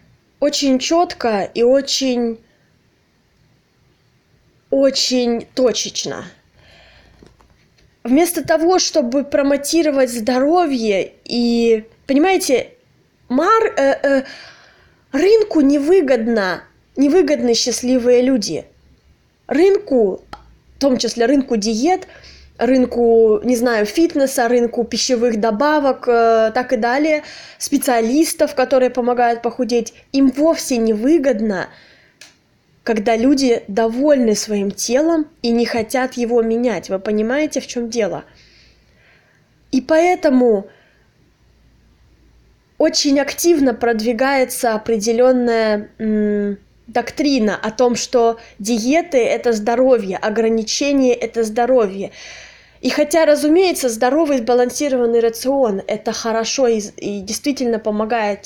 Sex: female